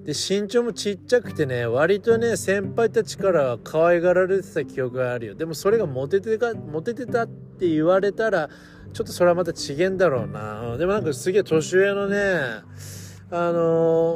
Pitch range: 130-185 Hz